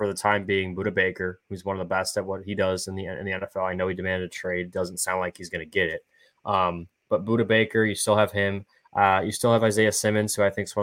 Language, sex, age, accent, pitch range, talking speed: English, male, 20-39, American, 90-105 Hz, 295 wpm